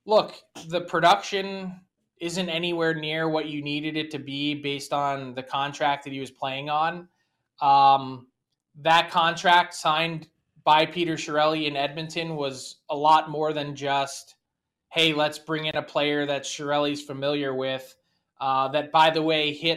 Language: English